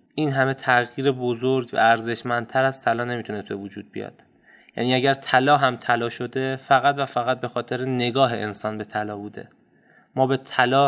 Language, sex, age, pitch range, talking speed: Persian, male, 20-39, 120-140 Hz, 170 wpm